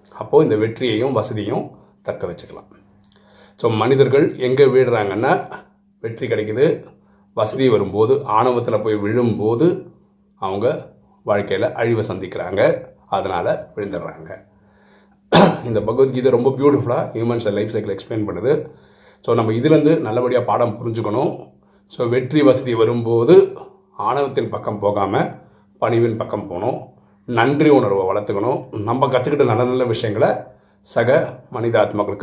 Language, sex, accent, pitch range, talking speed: Tamil, male, native, 100-130 Hz, 110 wpm